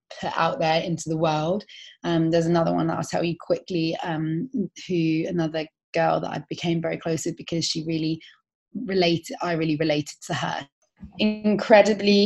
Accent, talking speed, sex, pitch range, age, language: British, 170 wpm, female, 165-180 Hz, 20-39, English